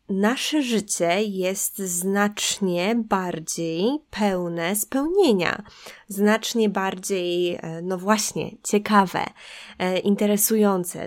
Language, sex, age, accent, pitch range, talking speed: Polish, female, 20-39, native, 190-225 Hz, 70 wpm